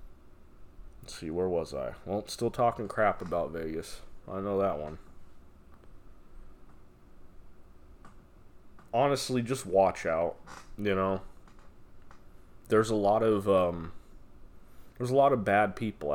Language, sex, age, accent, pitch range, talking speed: English, male, 20-39, American, 85-110 Hz, 115 wpm